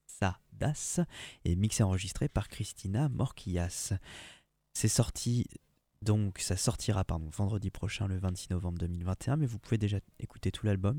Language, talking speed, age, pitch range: French, 135 wpm, 20-39, 95-125 Hz